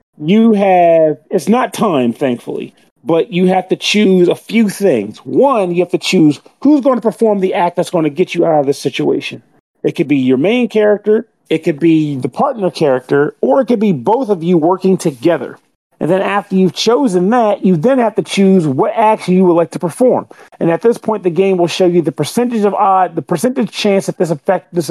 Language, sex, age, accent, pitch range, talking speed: English, male, 40-59, American, 160-205 Hz, 225 wpm